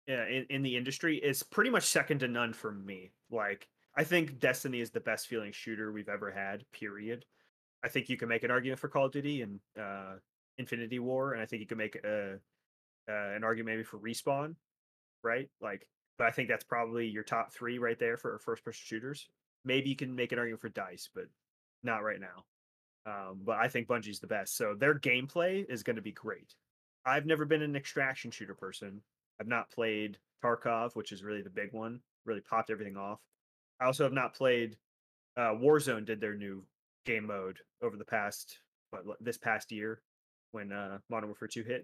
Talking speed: 205 wpm